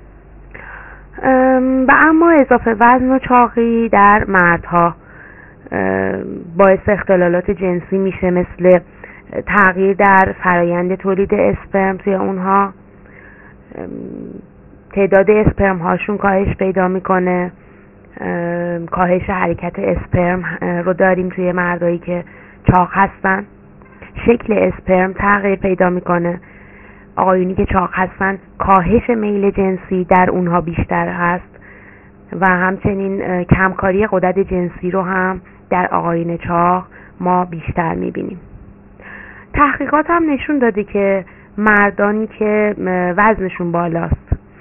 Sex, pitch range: female, 175-205 Hz